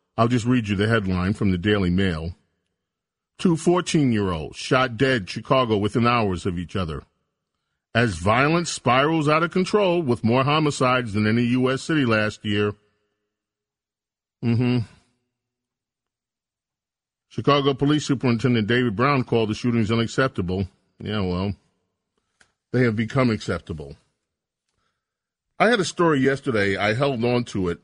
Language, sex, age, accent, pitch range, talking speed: English, male, 40-59, American, 105-135 Hz, 140 wpm